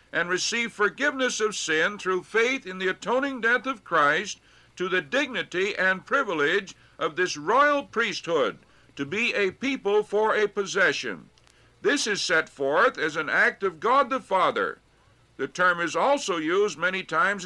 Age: 60-79